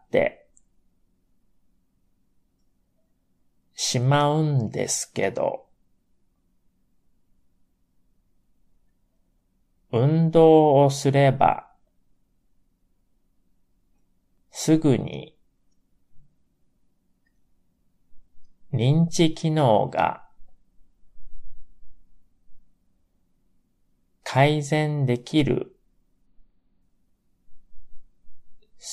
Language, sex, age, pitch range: Japanese, male, 40-59, 90-145 Hz